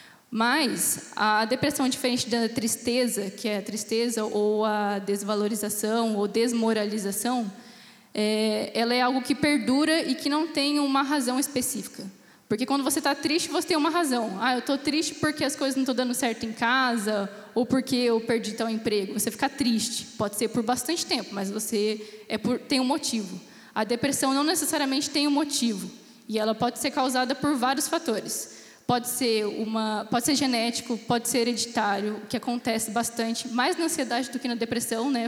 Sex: female